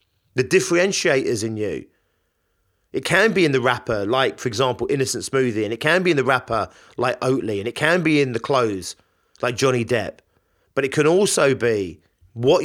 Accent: British